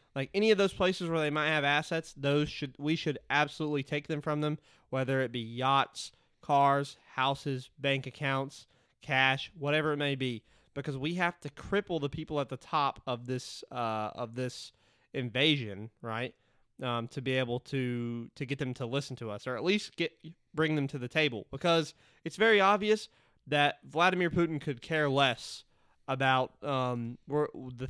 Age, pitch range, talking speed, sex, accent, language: 20-39, 130-160 Hz, 180 wpm, male, American, English